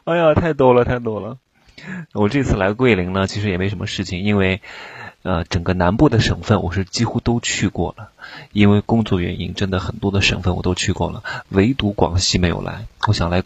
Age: 20-39